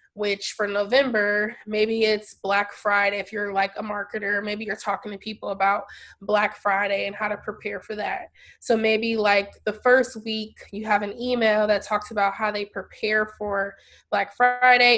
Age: 20-39